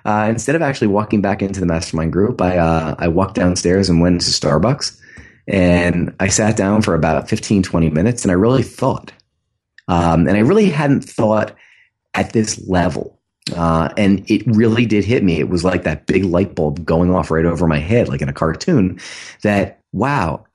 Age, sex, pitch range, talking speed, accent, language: 30-49, male, 85-110 Hz, 195 wpm, American, English